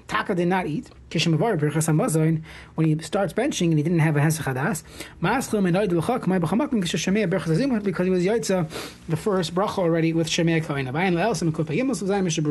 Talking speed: 110 wpm